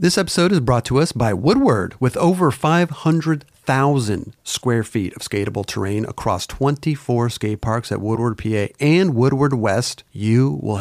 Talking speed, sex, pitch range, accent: 155 wpm, male, 120-160 Hz, American